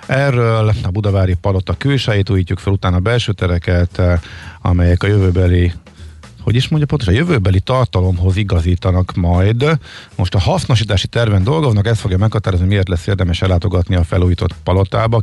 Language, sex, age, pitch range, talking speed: Hungarian, male, 50-69, 90-110 Hz, 140 wpm